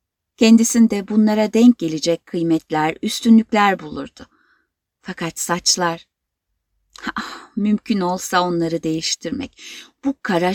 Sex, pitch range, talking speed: female, 160-225 Hz, 90 wpm